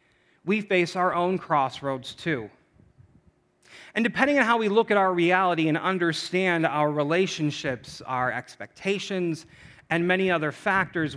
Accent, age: American, 40-59